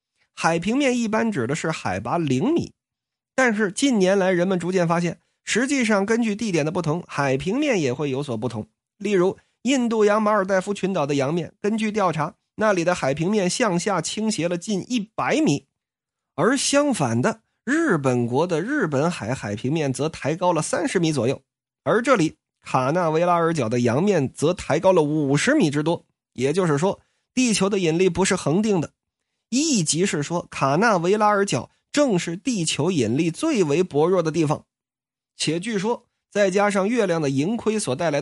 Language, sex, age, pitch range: Chinese, male, 30-49, 150-215 Hz